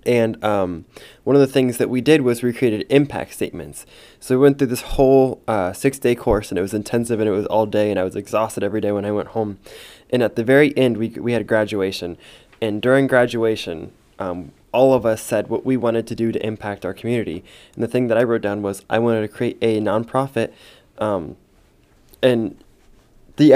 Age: 20-39